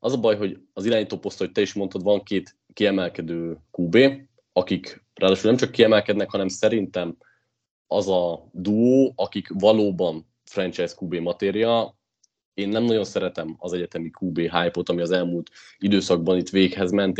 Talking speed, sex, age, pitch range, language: 155 wpm, male, 30-49, 90-110 Hz, Hungarian